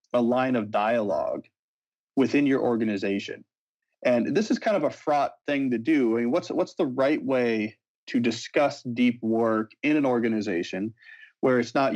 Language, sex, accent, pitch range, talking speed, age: English, male, American, 110-140 Hz, 170 wpm, 30-49